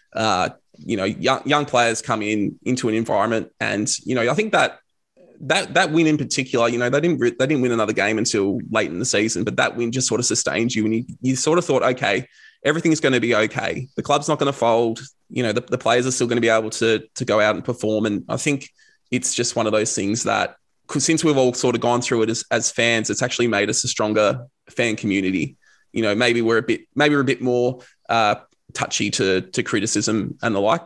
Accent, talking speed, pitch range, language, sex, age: Australian, 245 wpm, 110-140 Hz, English, male, 20-39